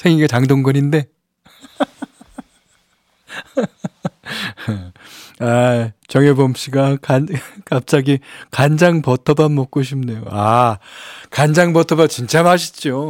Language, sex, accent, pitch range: Korean, male, native, 110-145 Hz